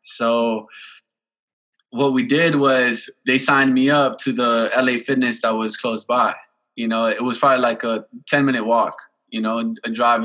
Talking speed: 180 wpm